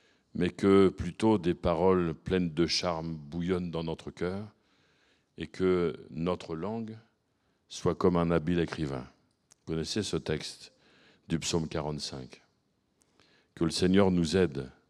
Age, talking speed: 50-69, 135 wpm